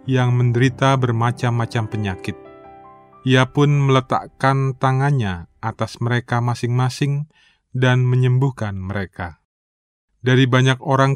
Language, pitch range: Indonesian, 110-135 Hz